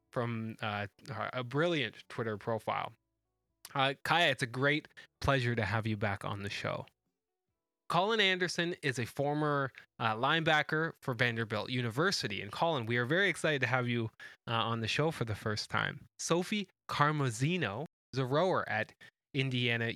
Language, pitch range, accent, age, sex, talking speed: English, 115-160 Hz, American, 20-39, male, 160 wpm